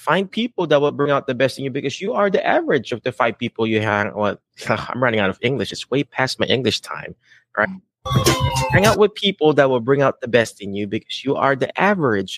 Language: English